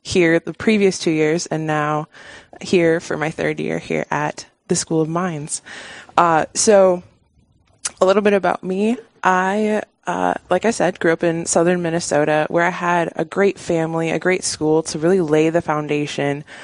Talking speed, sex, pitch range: 175 wpm, female, 155-185 Hz